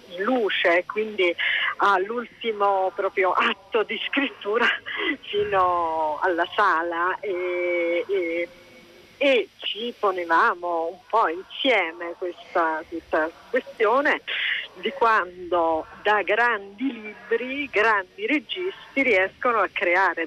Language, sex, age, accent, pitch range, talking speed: Italian, female, 40-59, native, 175-265 Hz, 90 wpm